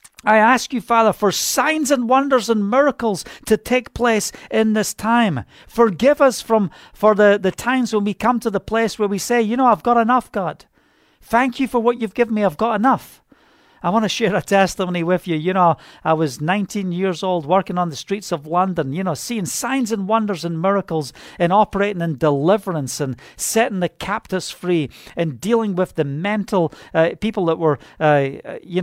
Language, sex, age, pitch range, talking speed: English, male, 50-69, 165-220 Hz, 200 wpm